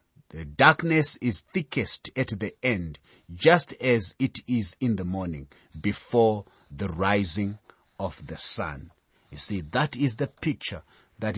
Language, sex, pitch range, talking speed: English, male, 95-135 Hz, 140 wpm